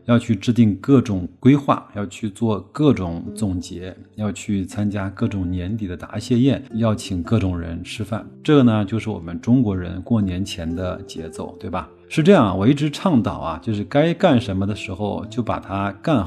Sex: male